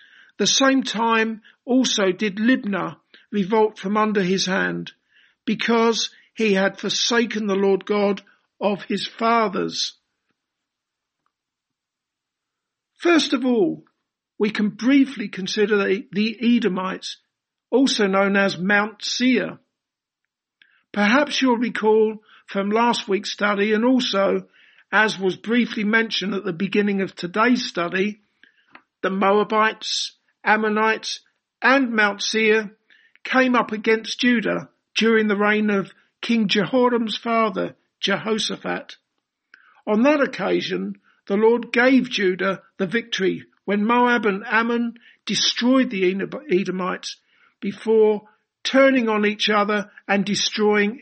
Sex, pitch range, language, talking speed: male, 200-235 Hz, English, 110 wpm